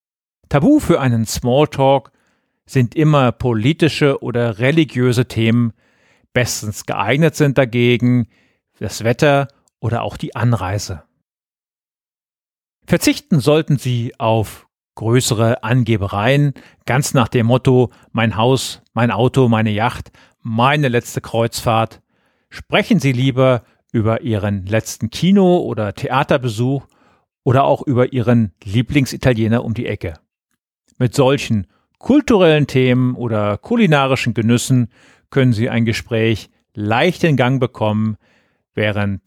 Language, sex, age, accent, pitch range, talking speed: German, male, 40-59, German, 110-140 Hz, 110 wpm